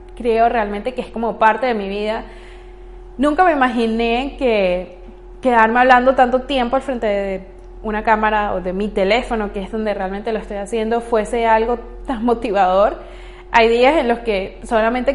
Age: 20-39